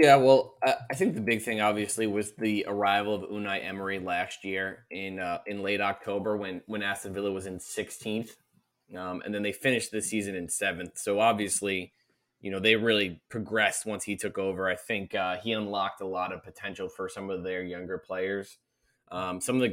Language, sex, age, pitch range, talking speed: English, male, 20-39, 95-105 Hz, 205 wpm